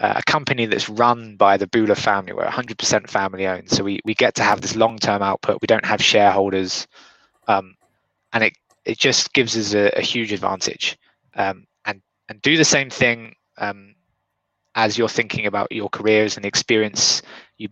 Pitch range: 100-120 Hz